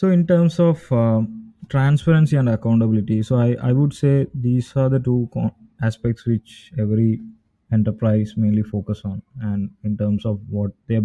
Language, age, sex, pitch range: English, 20-39, male, 110-130 Hz